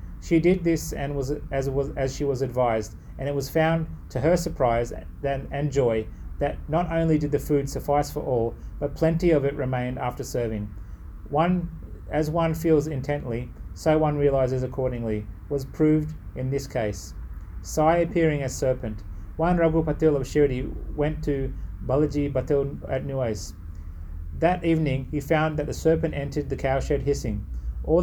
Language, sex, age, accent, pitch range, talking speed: English, male, 30-49, Australian, 115-155 Hz, 165 wpm